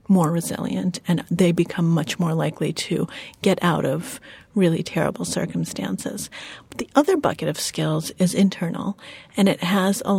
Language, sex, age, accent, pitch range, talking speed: English, female, 30-49, American, 170-195 Hz, 155 wpm